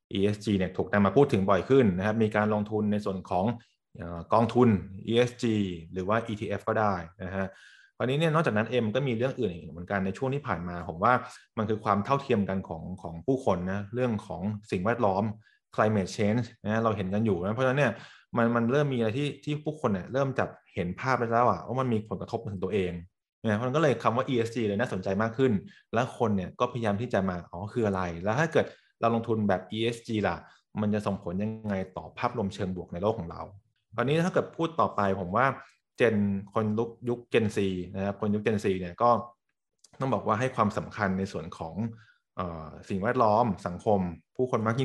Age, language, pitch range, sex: 20-39, English, 95-120 Hz, male